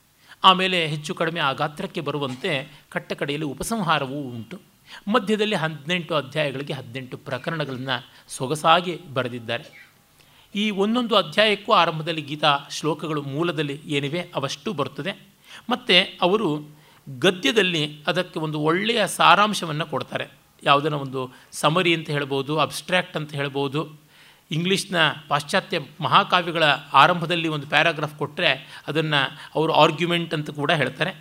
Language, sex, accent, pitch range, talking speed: Kannada, male, native, 145-180 Hz, 105 wpm